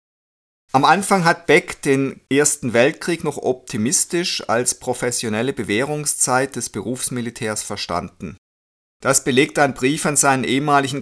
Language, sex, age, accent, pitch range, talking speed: German, male, 50-69, German, 115-145 Hz, 120 wpm